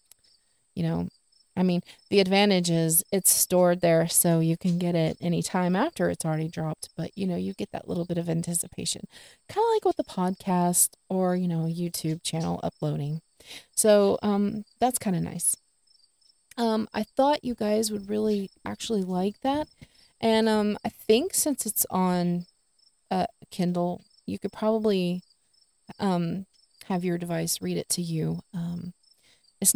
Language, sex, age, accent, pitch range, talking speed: English, female, 30-49, American, 165-190 Hz, 165 wpm